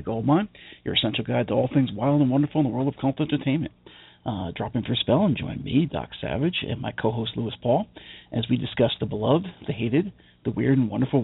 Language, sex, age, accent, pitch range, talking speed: English, male, 40-59, American, 120-150 Hz, 230 wpm